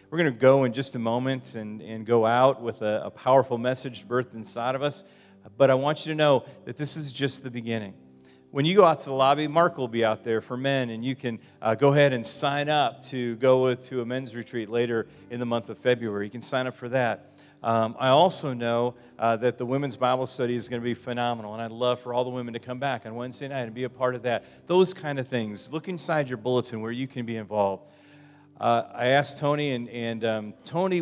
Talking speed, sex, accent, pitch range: 250 wpm, male, American, 115-135 Hz